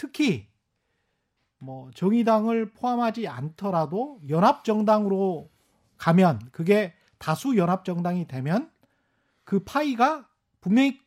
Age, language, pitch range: 40-59, Korean, 155-225 Hz